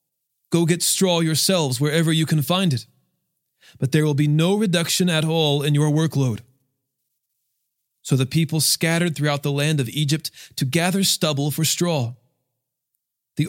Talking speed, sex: 155 wpm, male